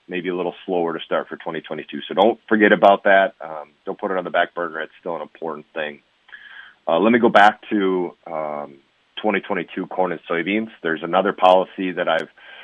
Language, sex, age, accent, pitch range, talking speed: English, male, 30-49, American, 85-95 Hz, 200 wpm